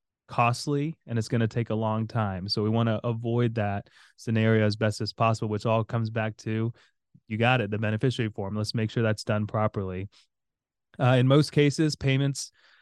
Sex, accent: male, American